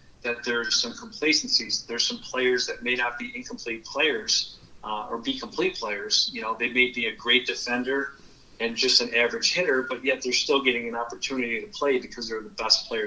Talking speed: 205 wpm